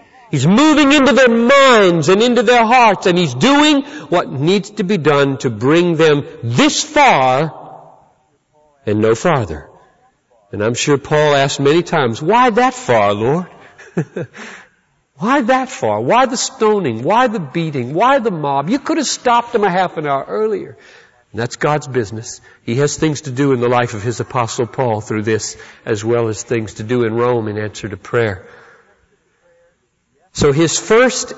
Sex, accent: male, American